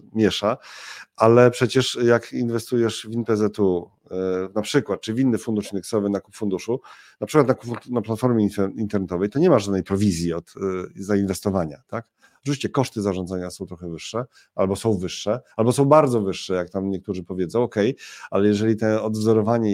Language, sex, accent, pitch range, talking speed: Polish, male, native, 95-110 Hz, 170 wpm